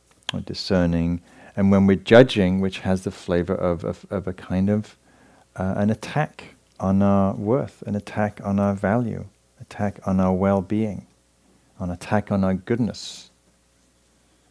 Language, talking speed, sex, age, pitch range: English, 155 wpm, male, 40-59, 85-105 Hz